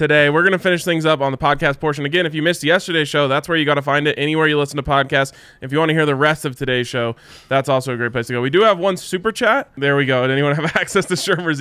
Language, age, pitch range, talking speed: English, 20-39, 125-160 Hz, 315 wpm